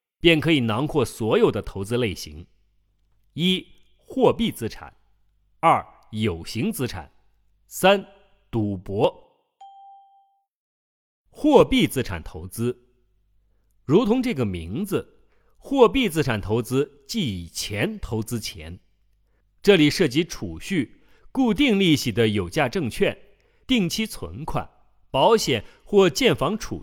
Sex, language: male, Chinese